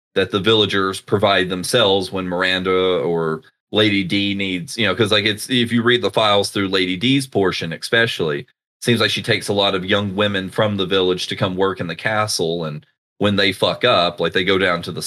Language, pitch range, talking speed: English, 90-105 Hz, 220 wpm